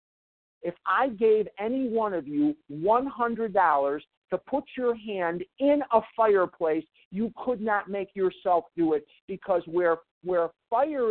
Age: 50-69